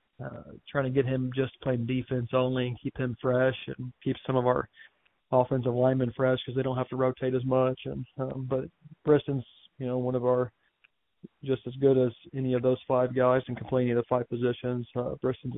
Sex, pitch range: male, 125-130 Hz